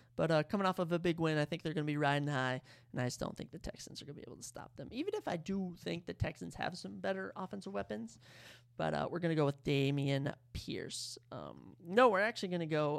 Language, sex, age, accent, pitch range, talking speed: English, male, 30-49, American, 130-185 Hz, 275 wpm